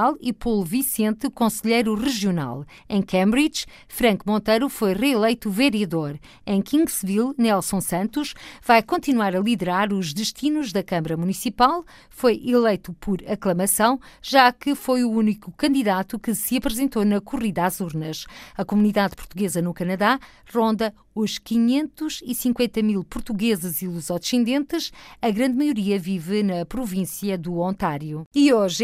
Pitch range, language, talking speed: 200-260 Hz, Portuguese, 135 wpm